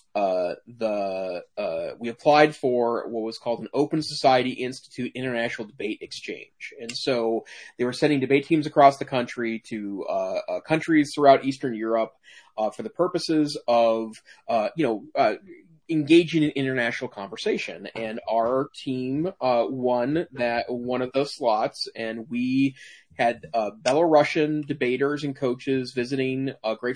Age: 30-49